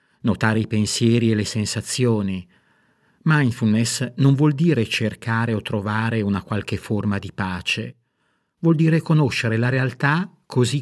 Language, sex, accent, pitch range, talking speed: Italian, male, native, 105-135 Hz, 135 wpm